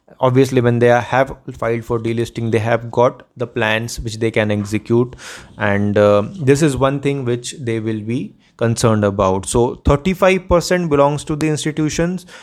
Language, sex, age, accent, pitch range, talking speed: English, male, 30-49, Indian, 120-160 Hz, 165 wpm